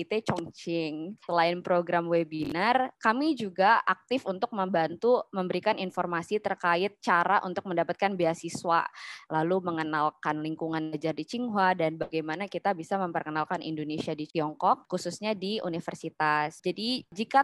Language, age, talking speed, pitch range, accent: Indonesian, 20-39, 120 wpm, 165-200 Hz, native